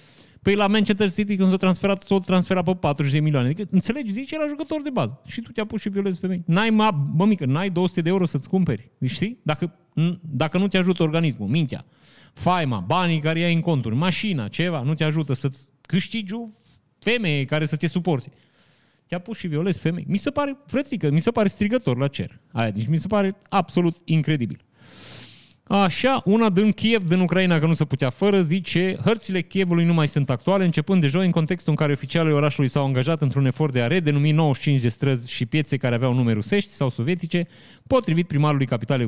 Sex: male